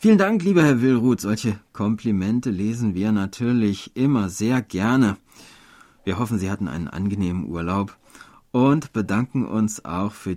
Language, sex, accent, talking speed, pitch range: German, male, German, 145 wpm, 100-130 Hz